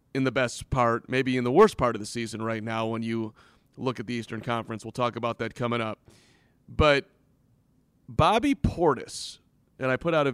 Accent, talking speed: American, 205 wpm